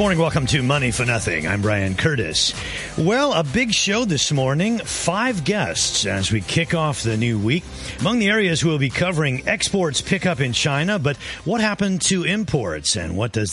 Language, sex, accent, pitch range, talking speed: English, male, American, 105-160 Hz, 195 wpm